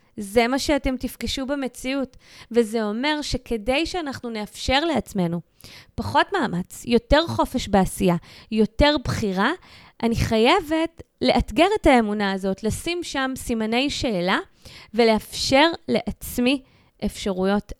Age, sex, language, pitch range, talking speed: 20-39, female, Hebrew, 205-270 Hz, 105 wpm